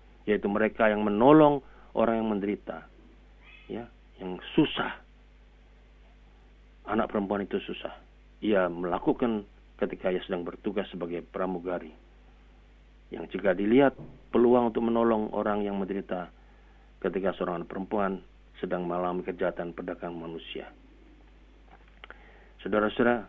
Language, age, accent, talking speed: Indonesian, 40-59, native, 105 wpm